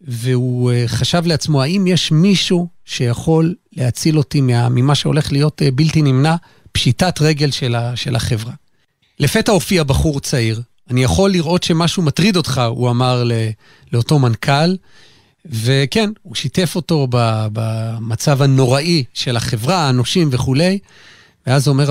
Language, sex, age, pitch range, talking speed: Hebrew, male, 40-59, 125-170 Hz, 125 wpm